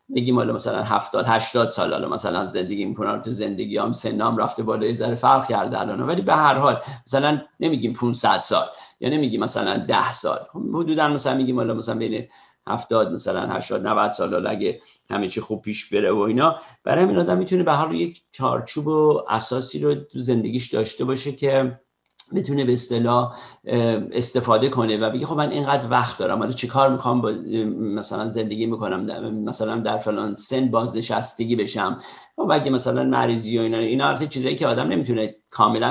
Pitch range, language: 115-135 Hz, Persian